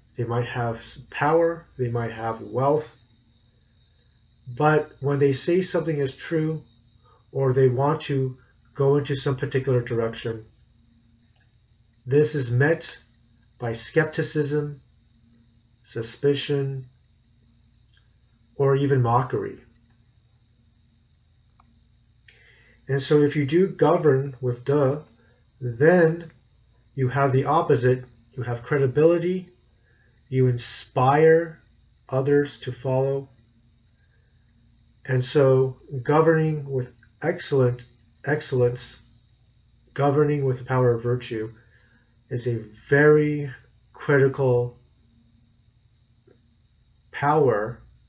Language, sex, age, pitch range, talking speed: English, male, 40-59, 115-140 Hz, 90 wpm